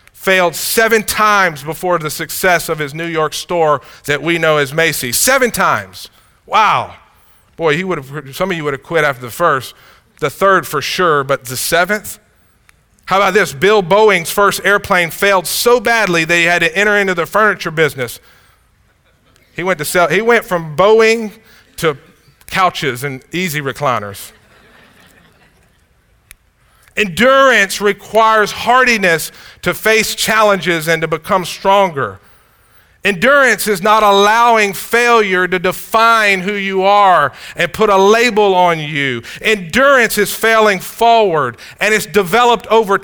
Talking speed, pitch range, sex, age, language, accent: 145 wpm, 165-220 Hz, male, 40-59, English, American